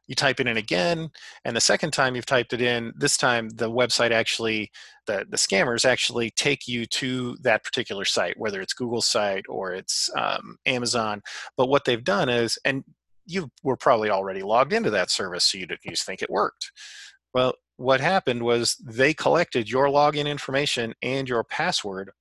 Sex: male